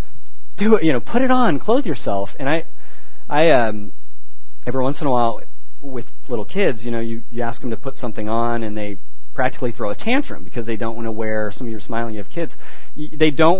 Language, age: English, 40-59